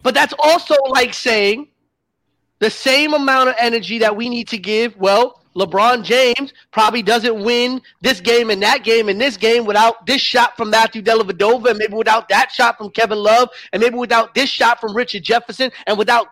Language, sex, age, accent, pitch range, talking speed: English, male, 30-49, American, 230-275 Hz, 200 wpm